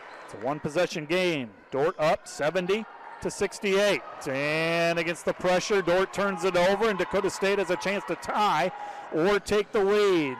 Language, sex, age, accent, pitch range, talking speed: English, male, 40-59, American, 165-200 Hz, 165 wpm